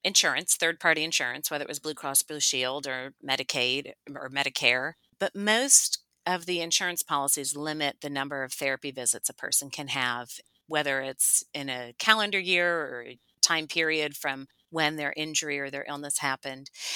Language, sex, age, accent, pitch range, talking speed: English, female, 40-59, American, 145-180 Hz, 165 wpm